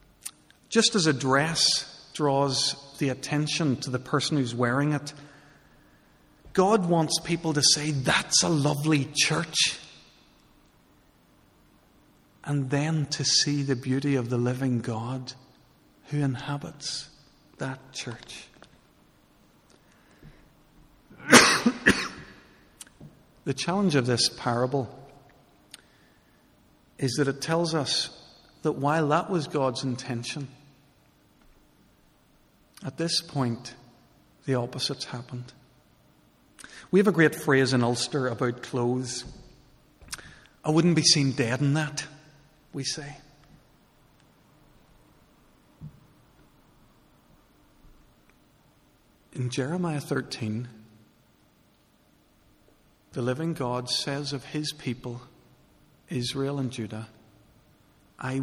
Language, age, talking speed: English, 50-69, 90 wpm